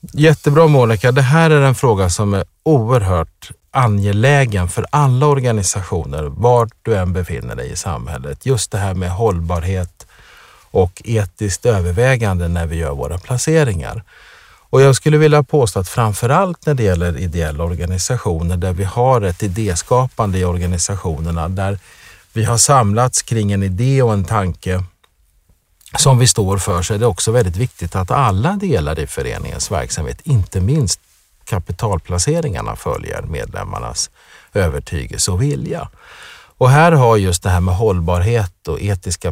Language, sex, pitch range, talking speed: Swedish, male, 90-125 Hz, 150 wpm